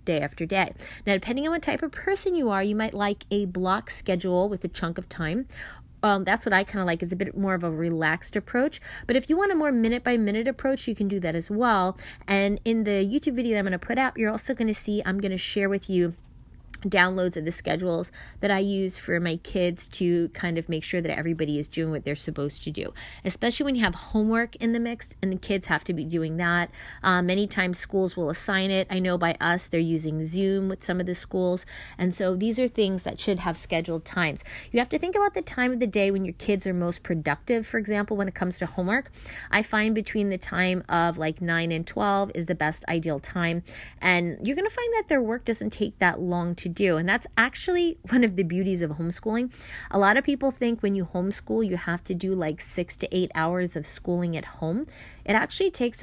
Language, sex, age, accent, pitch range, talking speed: English, female, 20-39, American, 170-220 Hz, 245 wpm